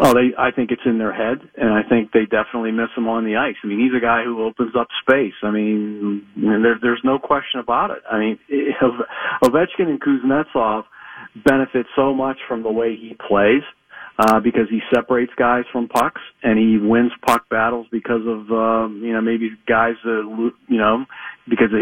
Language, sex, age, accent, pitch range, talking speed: English, male, 40-59, American, 115-140 Hz, 205 wpm